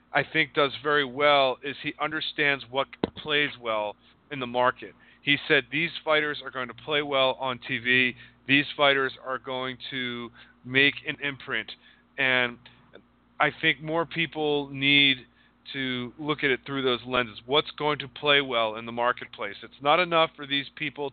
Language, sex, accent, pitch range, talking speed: English, male, American, 130-150 Hz, 170 wpm